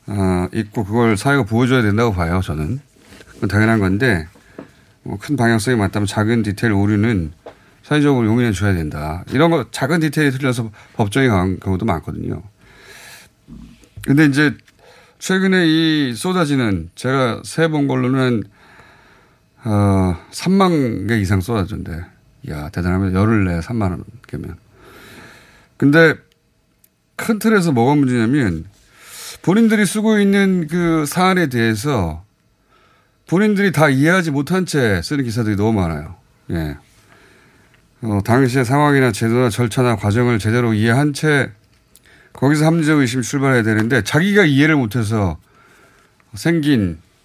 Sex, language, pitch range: male, Korean, 100-145 Hz